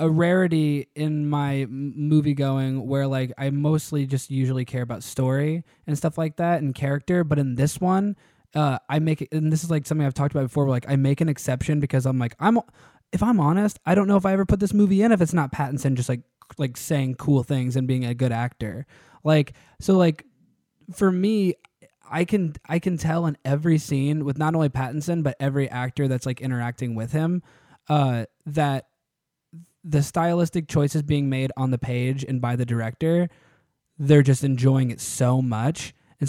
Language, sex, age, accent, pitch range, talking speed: English, male, 20-39, American, 135-165 Hz, 200 wpm